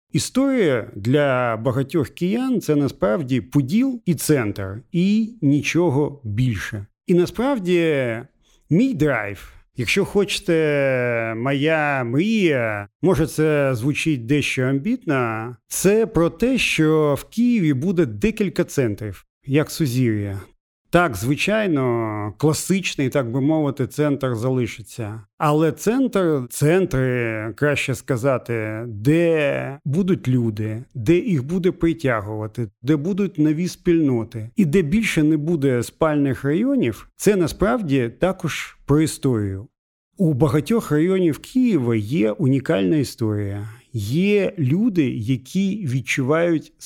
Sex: male